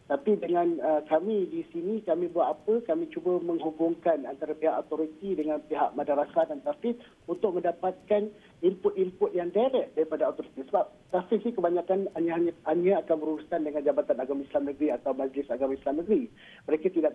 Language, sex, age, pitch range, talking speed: Malay, male, 50-69, 150-195 Hz, 160 wpm